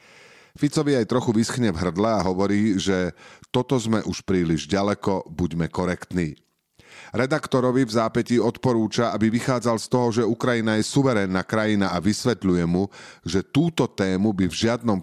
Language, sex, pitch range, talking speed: Slovak, male, 95-120 Hz, 150 wpm